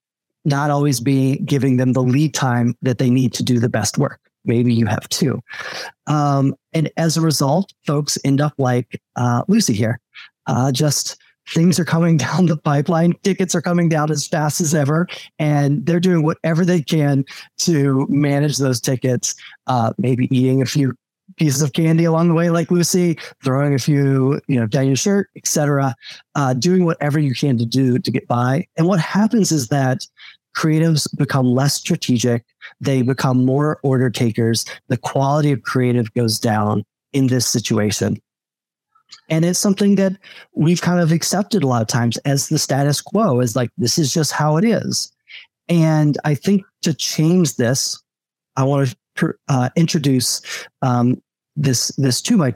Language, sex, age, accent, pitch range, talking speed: English, male, 30-49, American, 130-165 Hz, 175 wpm